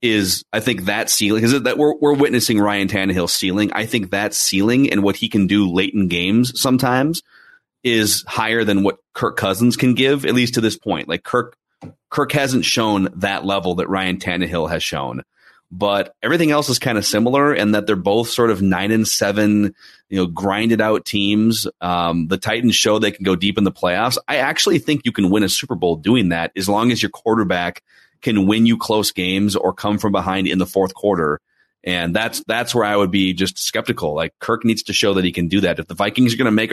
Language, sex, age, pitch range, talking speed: English, male, 30-49, 95-115 Hz, 225 wpm